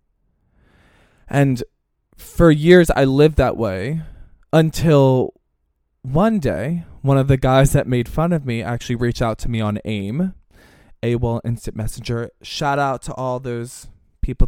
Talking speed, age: 145 wpm, 20-39